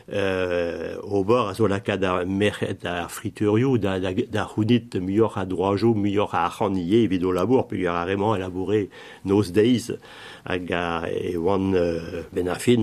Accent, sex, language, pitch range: French, male, French, 90-105 Hz